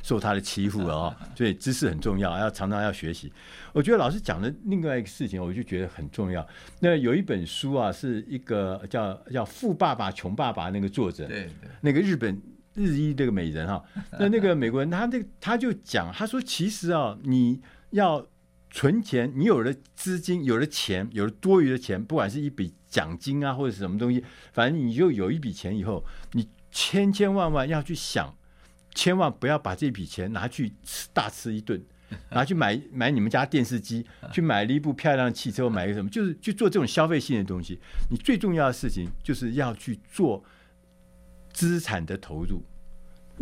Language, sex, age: Chinese, male, 50-69